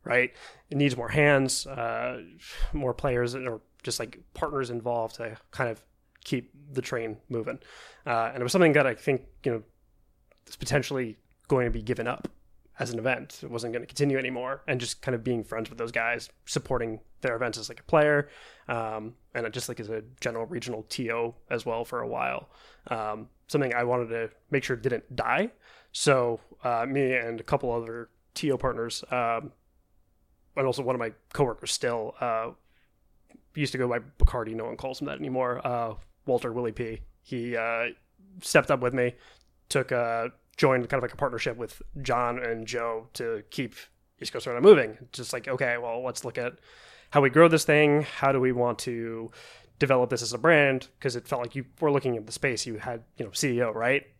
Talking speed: 200 wpm